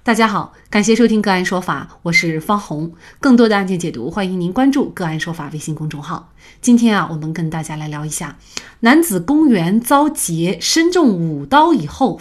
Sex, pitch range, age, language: female, 170-255 Hz, 30-49, Chinese